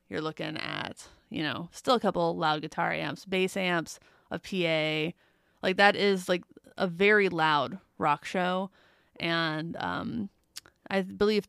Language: English